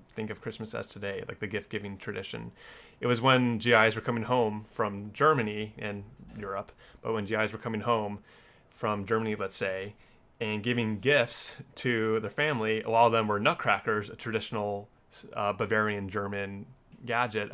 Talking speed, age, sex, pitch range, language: 160 wpm, 30-49, male, 105-120 Hz, English